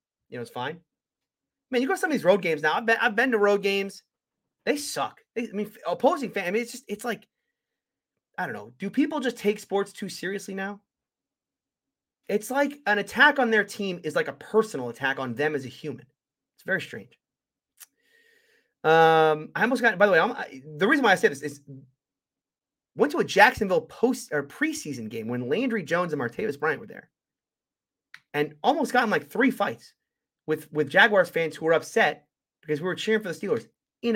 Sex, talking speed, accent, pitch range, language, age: male, 210 wpm, American, 155-235 Hz, English, 30-49